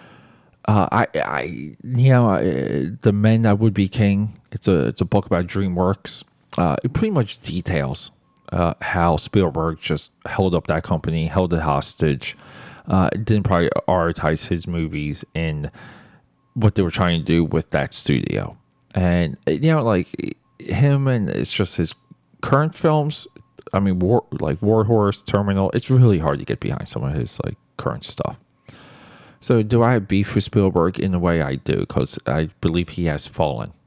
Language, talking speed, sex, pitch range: English, 175 wpm, male, 85-110 Hz